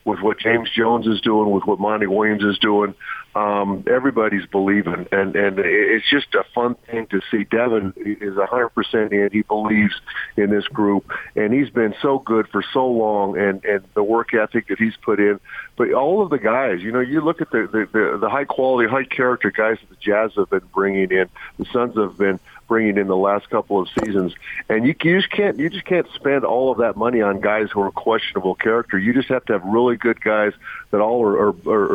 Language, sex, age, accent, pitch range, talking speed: English, male, 50-69, American, 105-120 Hz, 220 wpm